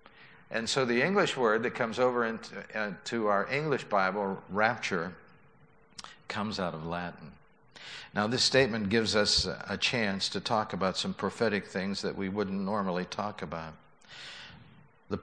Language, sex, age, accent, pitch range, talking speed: English, male, 60-79, American, 100-125 Hz, 150 wpm